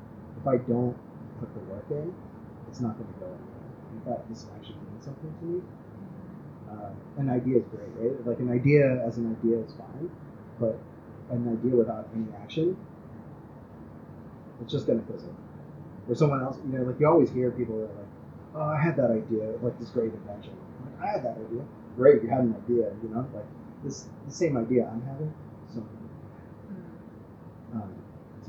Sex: male